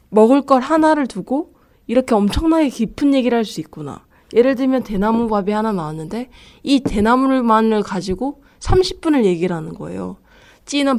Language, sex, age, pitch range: Korean, female, 20-39, 185-250 Hz